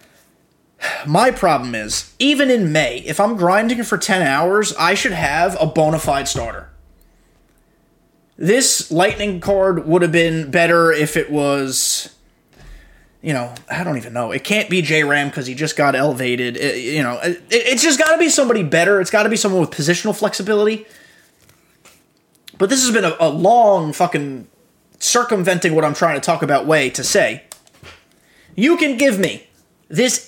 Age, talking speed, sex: 20-39, 165 wpm, male